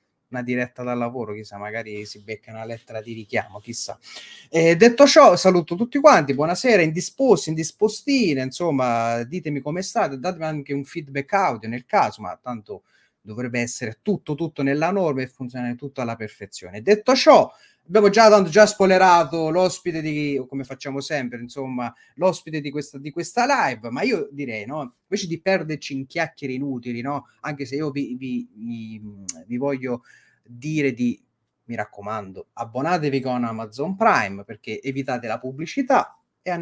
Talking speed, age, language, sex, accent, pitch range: 155 wpm, 30-49, Italian, male, native, 120-170 Hz